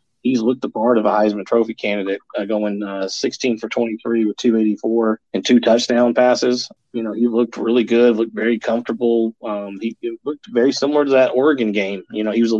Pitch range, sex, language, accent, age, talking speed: 110-125 Hz, male, English, American, 30-49, 215 wpm